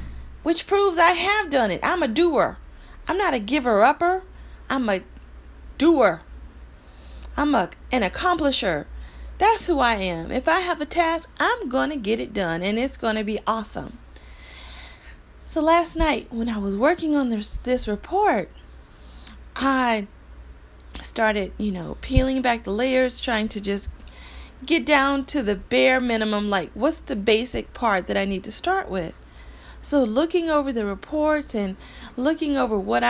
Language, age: English, 40-59